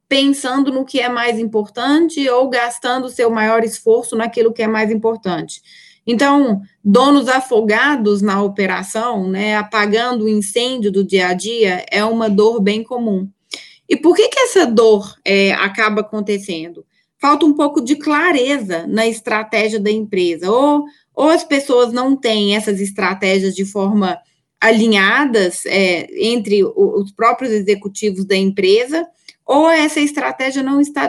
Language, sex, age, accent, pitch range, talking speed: Portuguese, female, 20-39, Brazilian, 195-250 Hz, 145 wpm